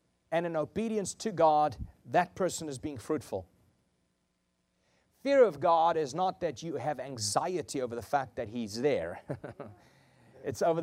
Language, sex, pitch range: English, male, 115-170 Hz